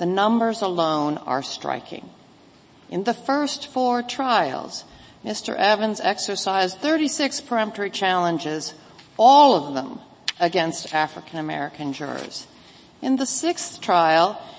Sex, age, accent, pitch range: female, 60-79, American, 170-235 Hz